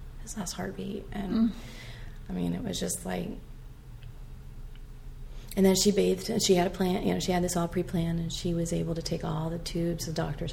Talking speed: 205 wpm